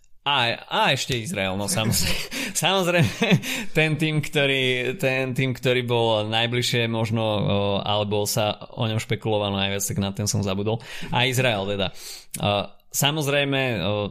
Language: Slovak